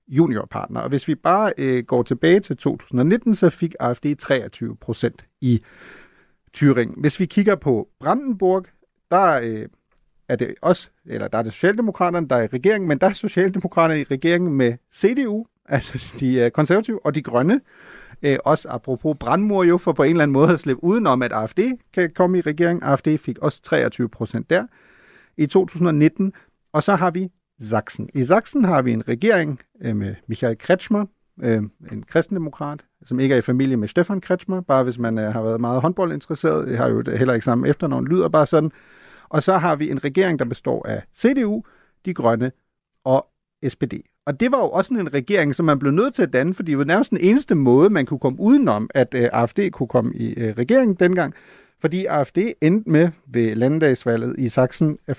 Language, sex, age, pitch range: Danish, male, 40-59, 125-185 Hz